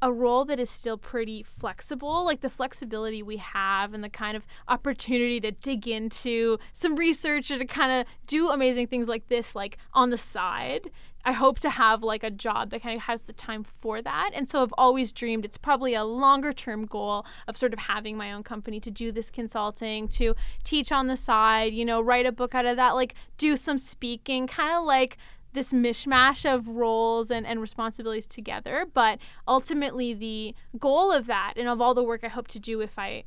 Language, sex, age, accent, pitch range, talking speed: English, female, 10-29, American, 220-260 Hz, 210 wpm